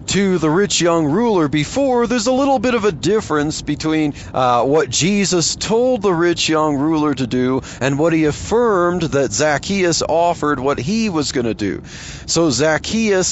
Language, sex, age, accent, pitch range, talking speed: English, male, 40-59, American, 140-185 Hz, 175 wpm